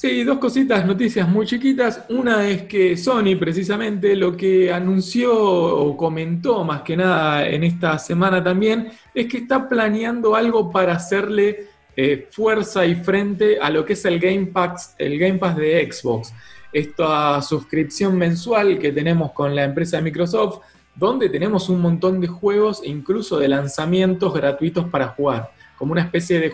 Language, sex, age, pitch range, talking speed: Spanish, male, 20-39, 150-200 Hz, 165 wpm